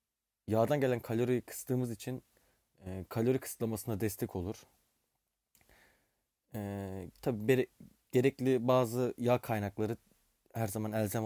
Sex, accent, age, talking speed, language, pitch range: male, native, 30-49, 100 wpm, Turkish, 100-130 Hz